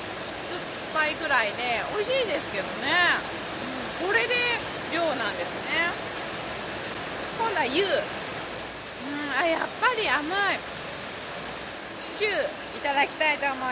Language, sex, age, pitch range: Japanese, female, 20-39, 280-390 Hz